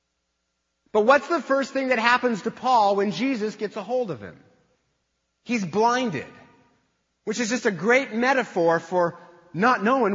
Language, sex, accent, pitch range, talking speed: English, male, American, 175-250 Hz, 160 wpm